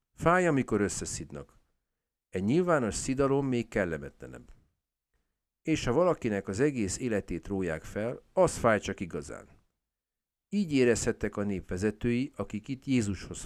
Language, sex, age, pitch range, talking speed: Hungarian, male, 50-69, 90-125 Hz, 120 wpm